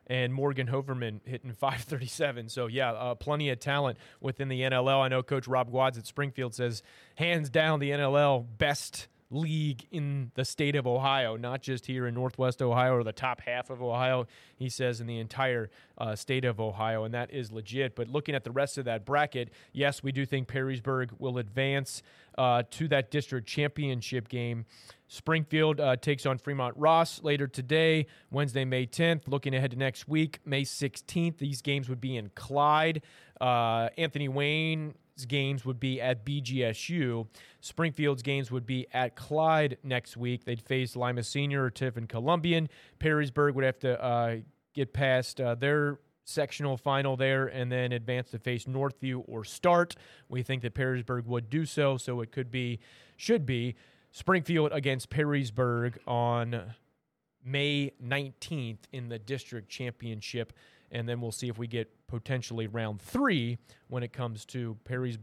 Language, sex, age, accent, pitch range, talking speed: English, male, 30-49, American, 120-140 Hz, 170 wpm